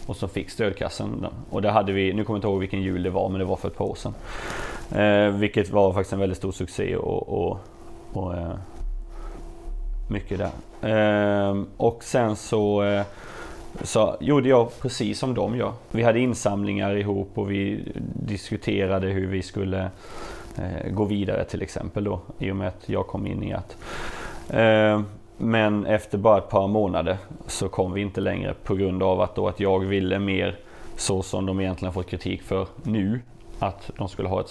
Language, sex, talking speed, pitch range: Swedish, male, 195 wpm, 95-110 Hz